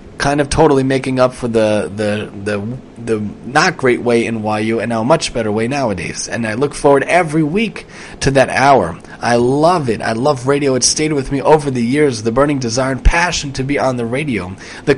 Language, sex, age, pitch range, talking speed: English, male, 30-49, 120-150 Hz, 220 wpm